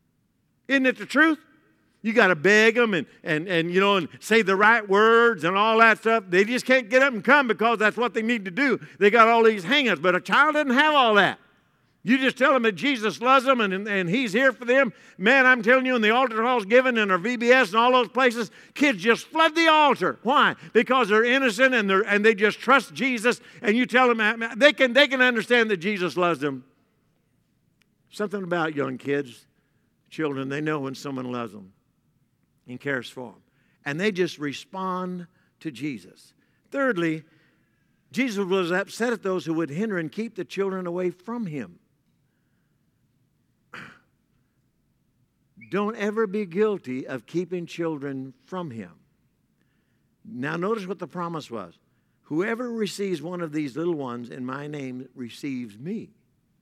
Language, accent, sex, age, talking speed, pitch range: English, American, male, 50-69, 185 wpm, 165-240 Hz